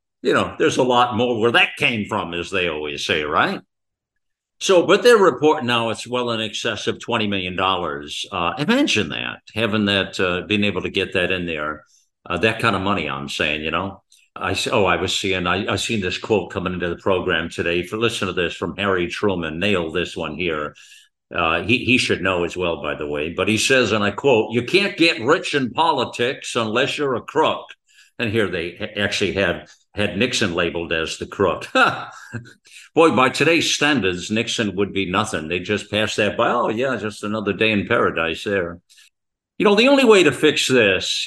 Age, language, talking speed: 60-79, English, 210 wpm